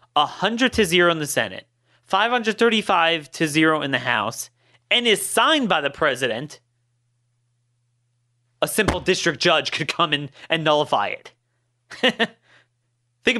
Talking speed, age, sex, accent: 130 wpm, 30-49, male, American